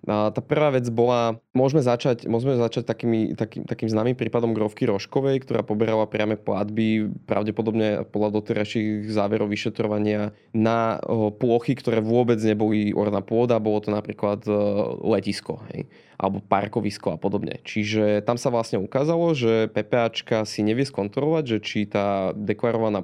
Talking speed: 140 wpm